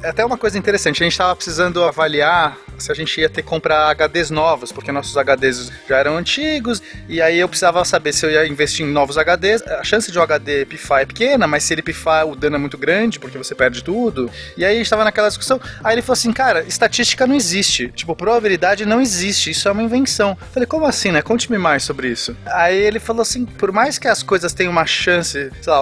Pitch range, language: 150-210 Hz, Portuguese